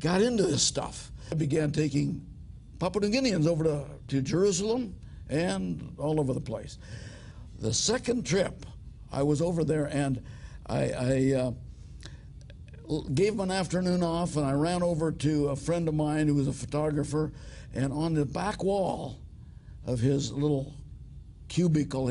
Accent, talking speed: American, 155 wpm